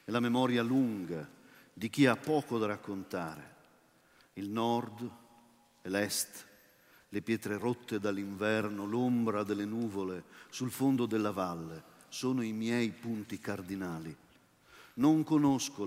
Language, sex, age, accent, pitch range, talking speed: Italian, male, 50-69, native, 105-135 Hz, 120 wpm